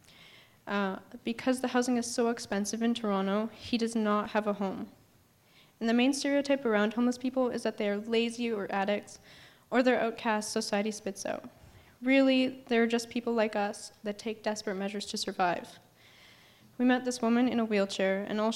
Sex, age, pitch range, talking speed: female, 10-29, 205-240 Hz, 180 wpm